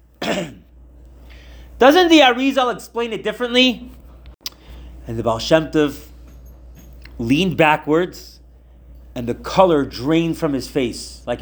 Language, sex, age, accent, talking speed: English, male, 30-49, American, 110 wpm